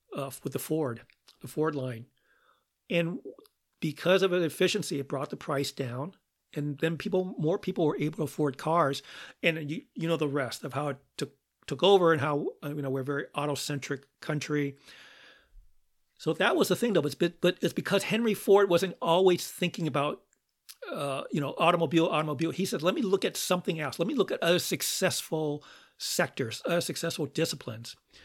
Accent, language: American, English